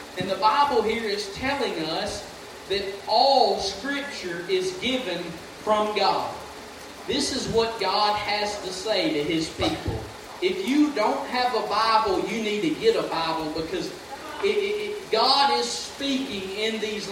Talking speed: 145 wpm